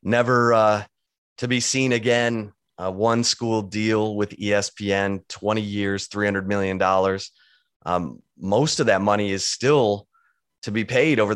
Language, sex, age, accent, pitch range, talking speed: English, male, 30-49, American, 95-110 Hz, 145 wpm